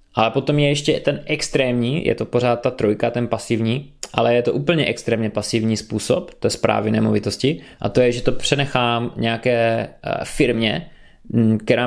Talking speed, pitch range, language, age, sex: 160 wpm, 110-125 Hz, Czech, 20-39, male